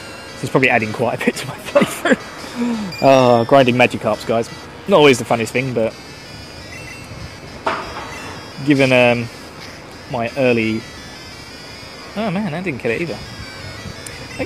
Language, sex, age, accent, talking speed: English, male, 20-39, British, 135 wpm